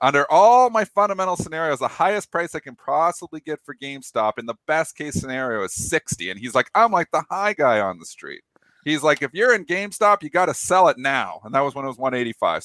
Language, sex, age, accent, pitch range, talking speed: English, male, 40-59, American, 115-170 Hz, 240 wpm